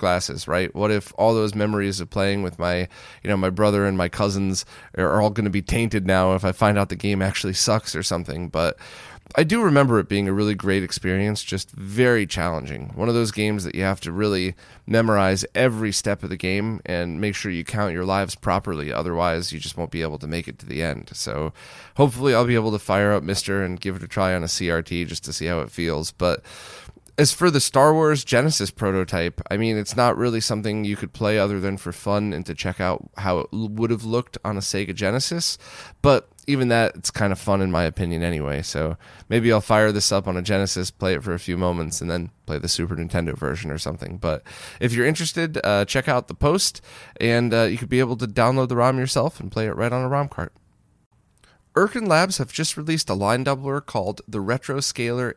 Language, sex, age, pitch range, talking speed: English, male, 20-39, 90-115 Hz, 235 wpm